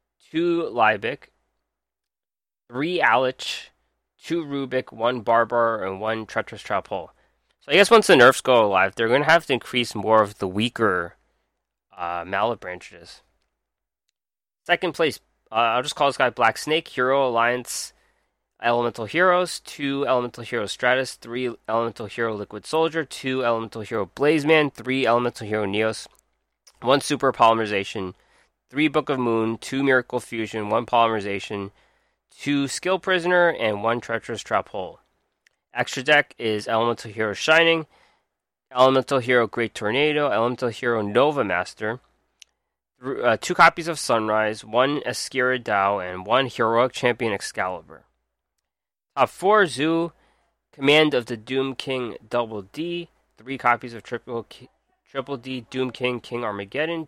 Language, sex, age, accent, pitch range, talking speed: English, male, 20-39, American, 110-140 Hz, 140 wpm